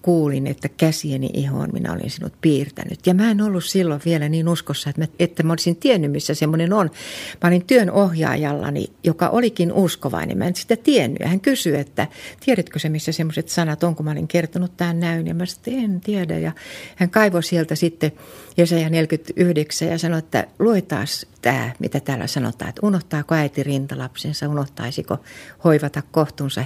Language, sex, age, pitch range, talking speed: Finnish, female, 60-79, 145-175 Hz, 180 wpm